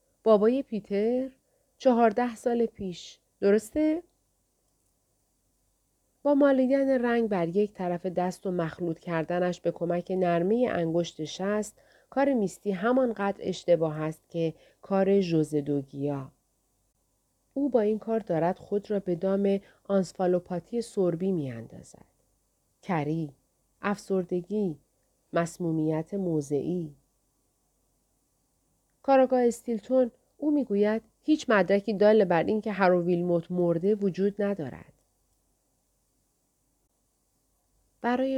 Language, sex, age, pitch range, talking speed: Persian, female, 40-59, 170-225 Hz, 95 wpm